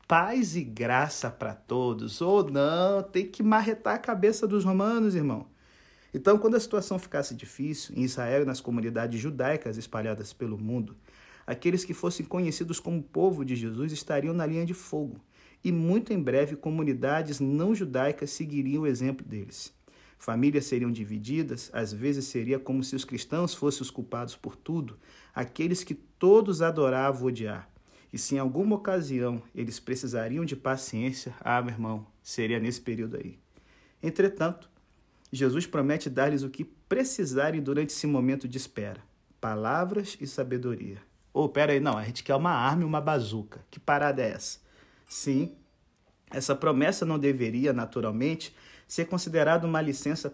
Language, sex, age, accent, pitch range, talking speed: Portuguese, male, 50-69, Brazilian, 120-165 Hz, 155 wpm